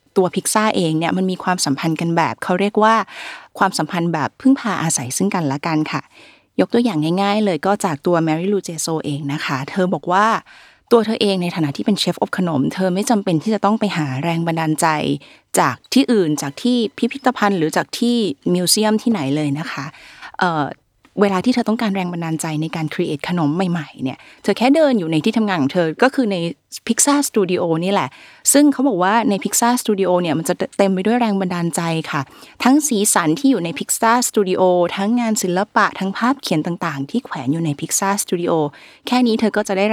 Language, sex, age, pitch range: Thai, female, 20-39, 160-215 Hz